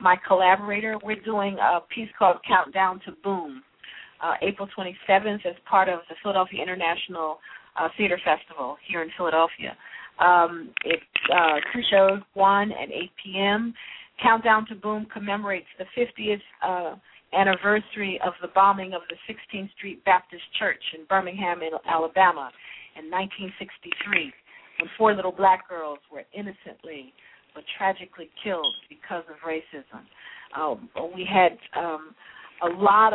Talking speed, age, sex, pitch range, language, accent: 135 wpm, 40-59, female, 175-210 Hz, English, American